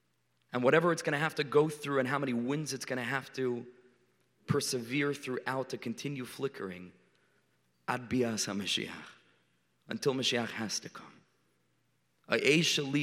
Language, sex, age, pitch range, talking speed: English, male, 30-49, 110-135 Hz, 130 wpm